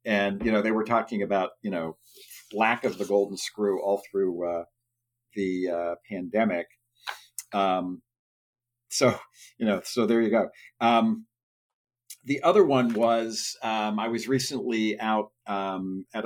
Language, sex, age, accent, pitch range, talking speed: English, male, 50-69, American, 95-120 Hz, 150 wpm